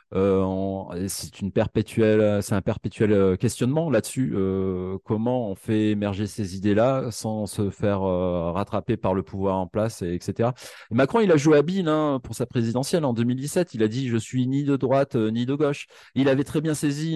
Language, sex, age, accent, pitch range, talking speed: French, male, 30-49, French, 95-125 Hz, 210 wpm